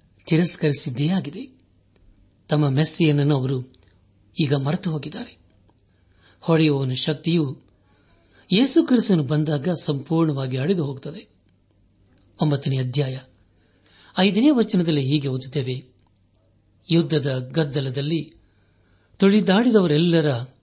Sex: male